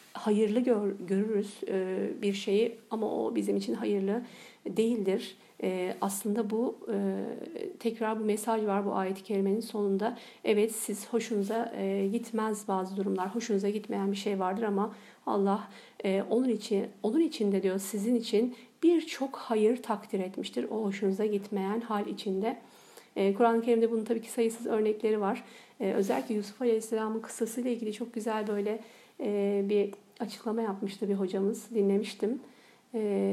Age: 50-69